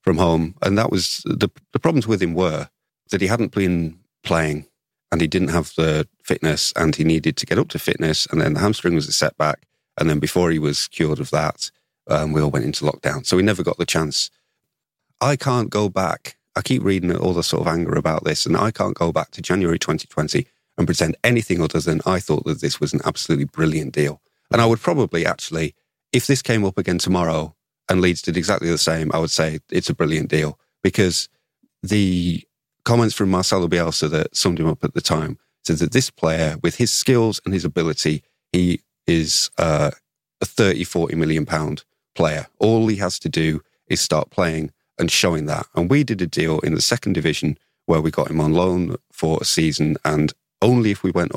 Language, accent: English, British